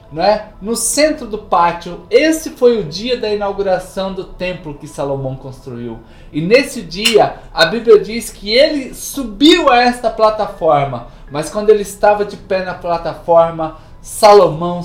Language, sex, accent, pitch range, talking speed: Portuguese, male, Brazilian, 170-220 Hz, 145 wpm